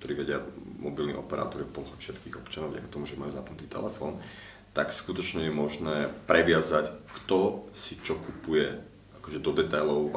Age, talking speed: 30-49, 155 wpm